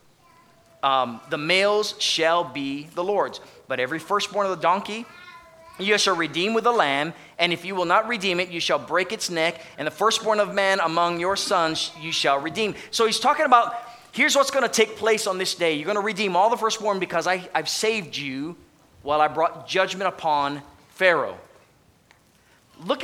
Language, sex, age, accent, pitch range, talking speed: English, male, 30-49, American, 150-220 Hz, 190 wpm